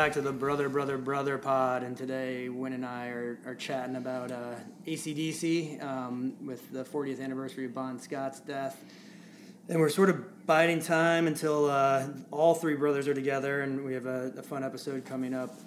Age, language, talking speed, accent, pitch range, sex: 20-39, English, 185 wpm, American, 125-145 Hz, male